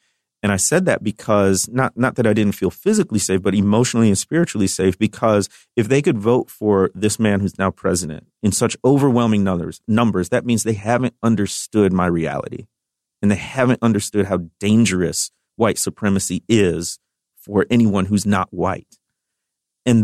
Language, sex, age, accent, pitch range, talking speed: English, male, 40-59, American, 105-140 Hz, 170 wpm